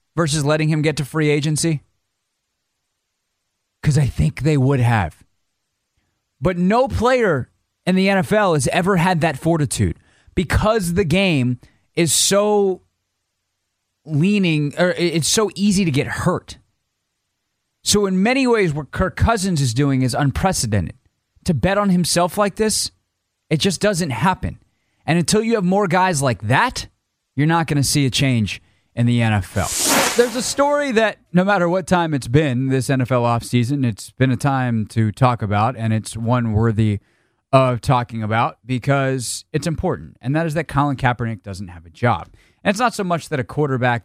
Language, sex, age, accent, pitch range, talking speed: English, male, 30-49, American, 105-170 Hz, 170 wpm